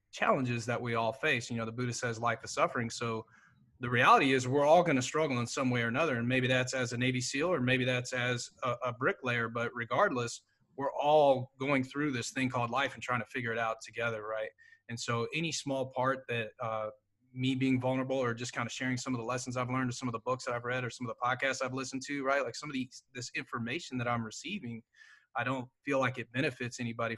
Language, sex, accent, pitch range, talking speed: English, male, American, 115-130 Hz, 250 wpm